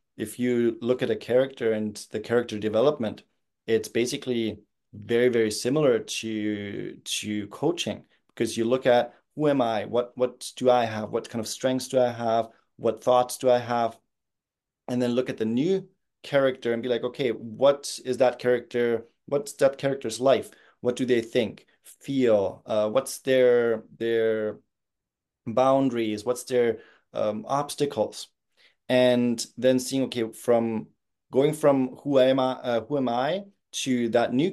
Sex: male